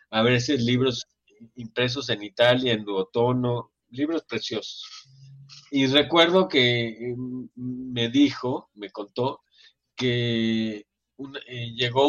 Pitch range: 120-145 Hz